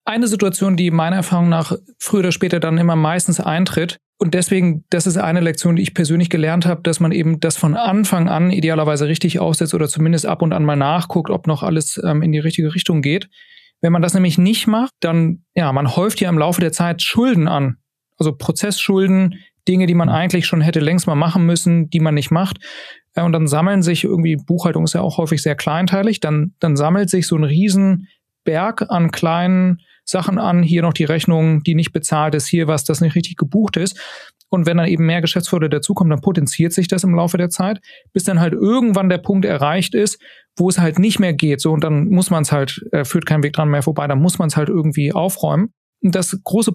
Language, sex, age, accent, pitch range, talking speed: German, male, 40-59, German, 160-190 Hz, 225 wpm